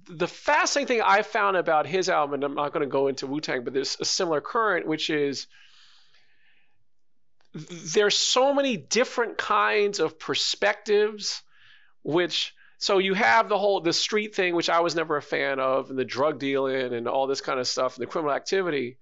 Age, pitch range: 40-59, 145-210 Hz